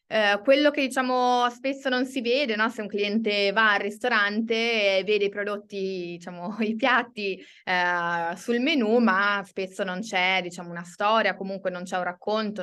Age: 20-39